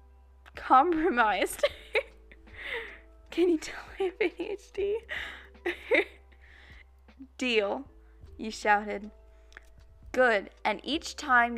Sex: female